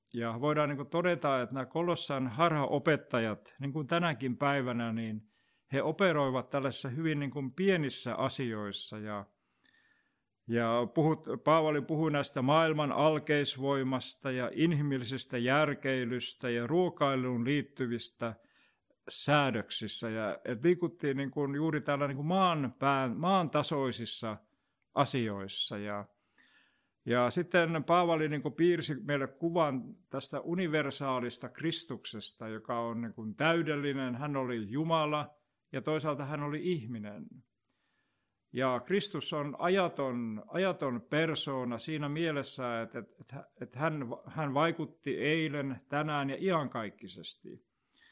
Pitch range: 125-155 Hz